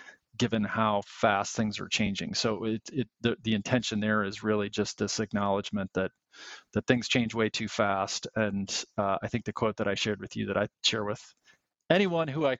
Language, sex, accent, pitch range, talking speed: English, male, American, 110-130 Hz, 205 wpm